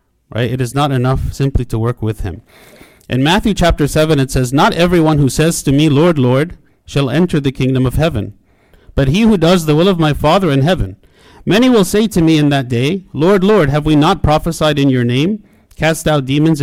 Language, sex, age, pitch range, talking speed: English, male, 50-69, 125-165 Hz, 220 wpm